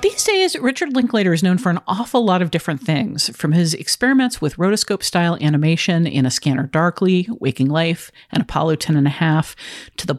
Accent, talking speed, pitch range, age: American, 185 wpm, 150-215 Hz, 50-69